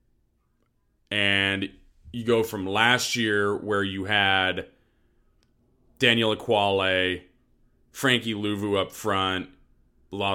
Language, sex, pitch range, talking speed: English, male, 95-125 Hz, 100 wpm